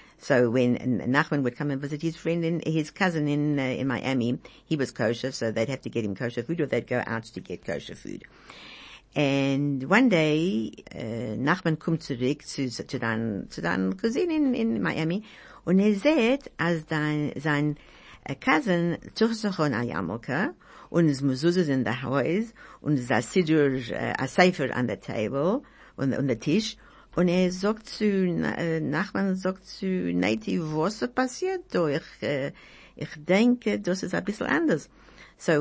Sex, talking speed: female, 140 wpm